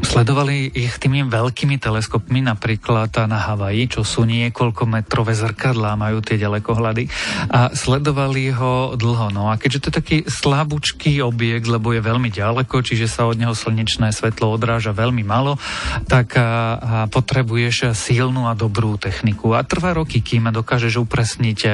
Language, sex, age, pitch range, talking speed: Slovak, male, 40-59, 110-130 Hz, 150 wpm